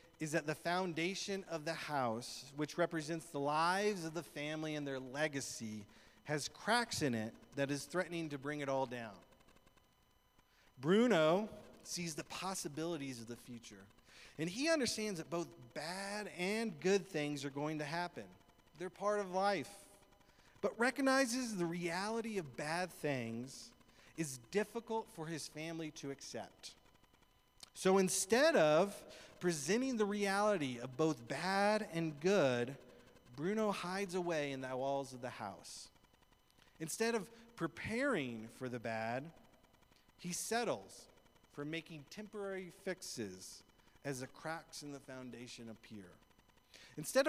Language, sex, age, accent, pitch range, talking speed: English, male, 40-59, American, 130-195 Hz, 135 wpm